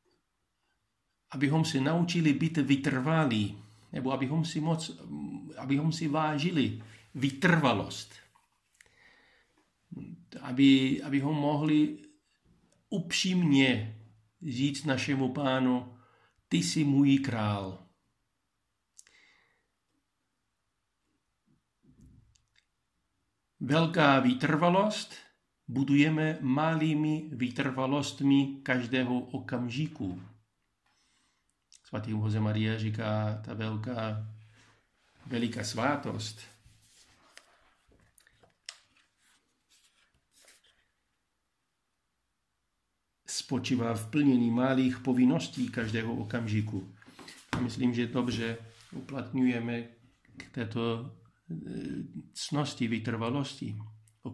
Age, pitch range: 50-69, 110-140 Hz